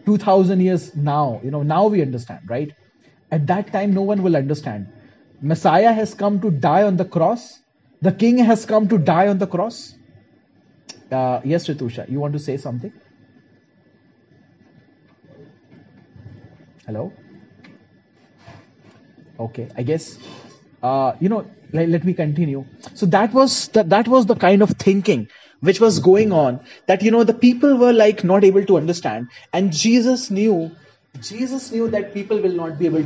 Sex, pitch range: male, 150-210 Hz